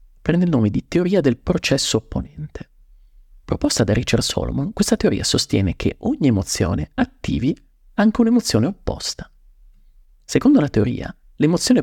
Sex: male